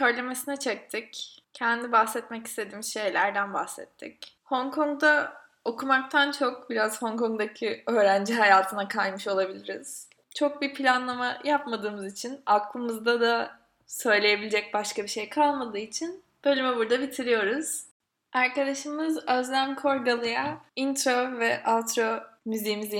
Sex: female